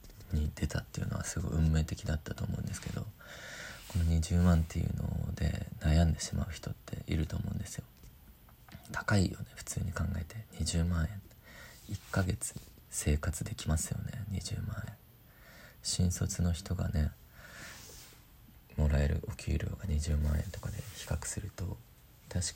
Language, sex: Japanese, male